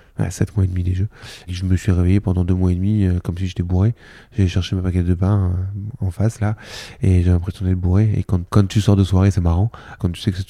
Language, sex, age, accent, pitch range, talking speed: French, male, 20-39, French, 90-105 Hz, 280 wpm